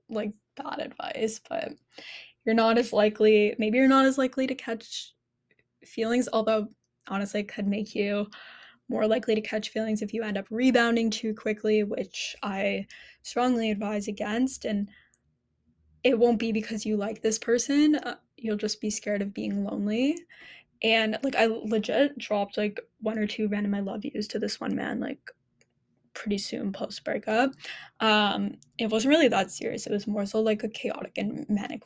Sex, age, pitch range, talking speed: female, 10-29, 210-240 Hz, 175 wpm